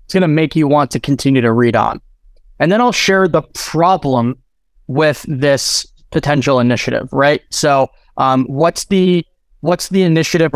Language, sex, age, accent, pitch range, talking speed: English, male, 20-39, American, 135-175 Hz, 165 wpm